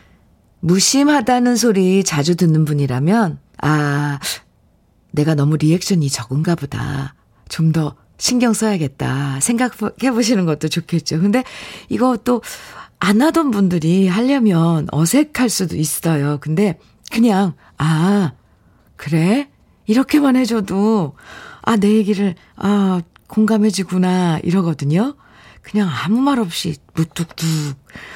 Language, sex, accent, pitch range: Korean, female, native, 160-235 Hz